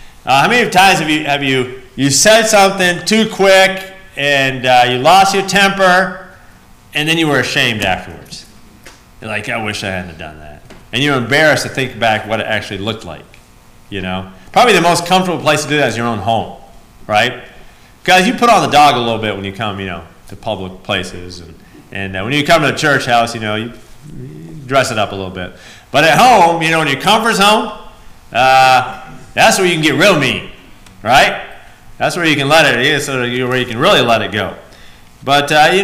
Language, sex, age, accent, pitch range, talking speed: English, male, 30-49, American, 100-150 Hz, 220 wpm